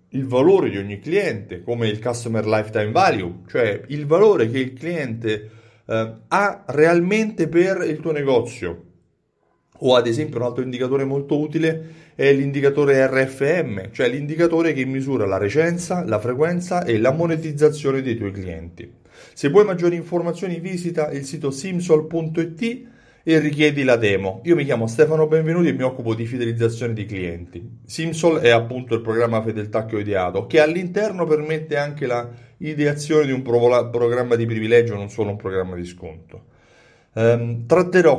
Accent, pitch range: native, 110-155 Hz